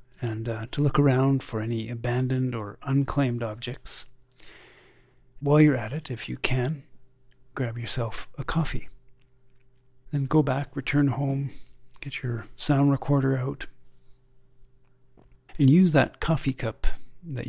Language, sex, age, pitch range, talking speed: English, male, 40-59, 120-135 Hz, 130 wpm